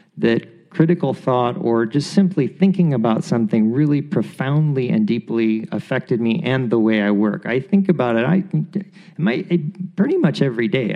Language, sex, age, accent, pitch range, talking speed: English, male, 40-59, American, 125-185 Hz, 165 wpm